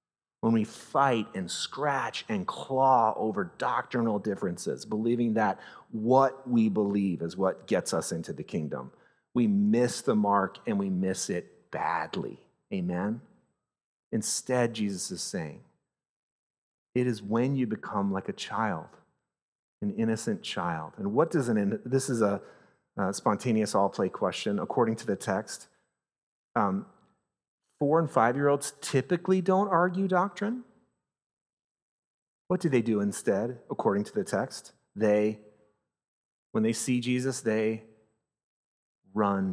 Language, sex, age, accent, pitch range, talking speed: English, male, 40-59, American, 100-135 Hz, 135 wpm